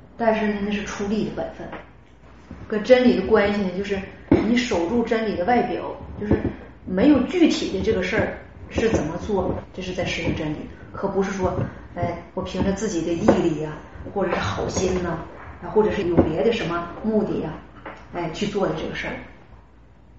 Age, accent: 30-49, native